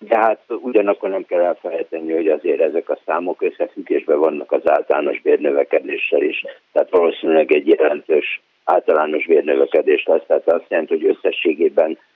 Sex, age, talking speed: male, 60-79, 145 wpm